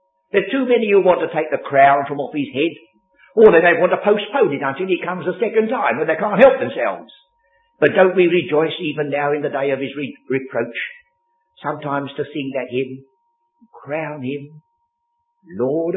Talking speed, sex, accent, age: 200 wpm, male, British, 50-69